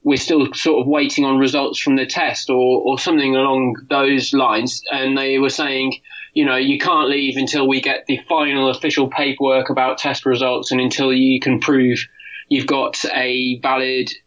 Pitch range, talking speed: 130-155 Hz, 185 wpm